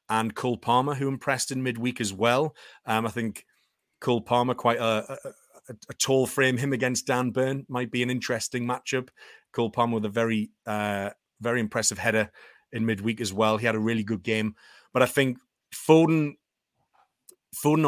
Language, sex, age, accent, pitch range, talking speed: English, male, 30-49, British, 110-130 Hz, 180 wpm